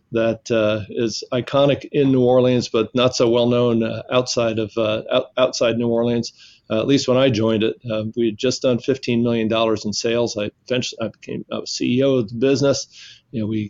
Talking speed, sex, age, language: 205 wpm, male, 40-59, English